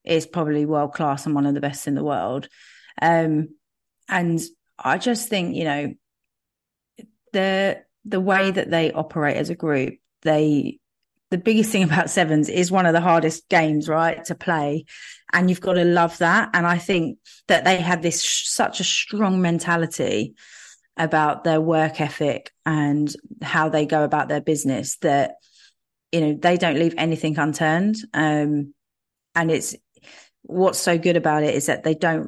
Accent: British